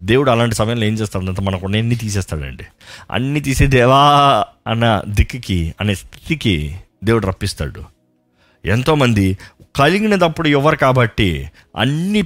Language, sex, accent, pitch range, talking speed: Telugu, male, native, 95-155 Hz, 115 wpm